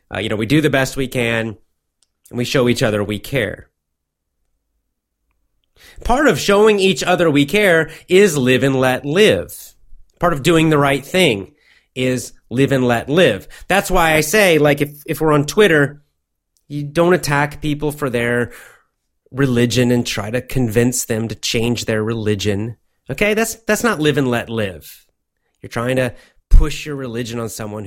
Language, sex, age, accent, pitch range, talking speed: English, male, 30-49, American, 95-155 Hz, 175 wpm